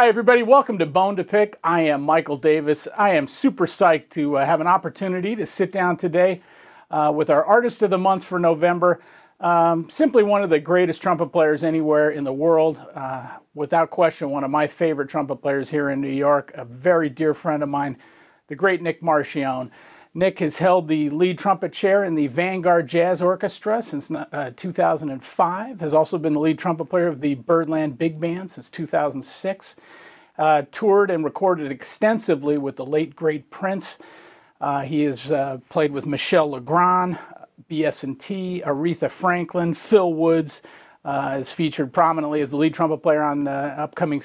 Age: 50-69